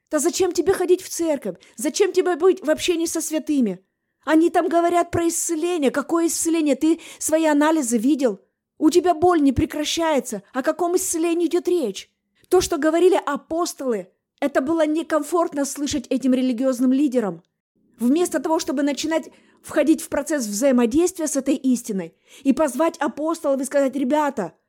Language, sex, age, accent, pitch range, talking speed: Russian, female, 20-39, native, 255-330 Hz, 150 wpm